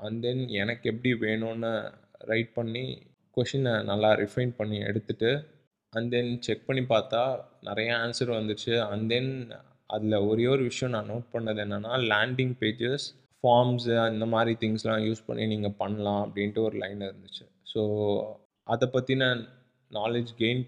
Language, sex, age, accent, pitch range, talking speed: Tamil, male, 20-39, native, 105-125 Hz, 145 wpm